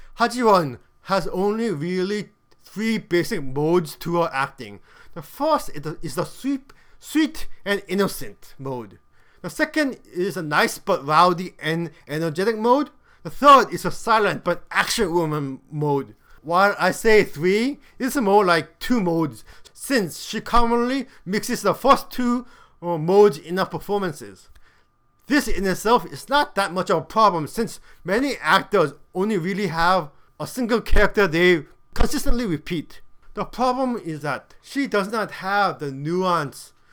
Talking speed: 145 wpm